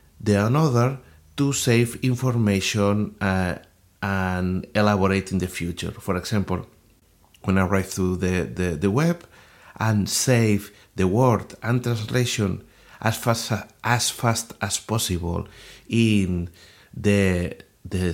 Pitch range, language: 95-125 Hz, English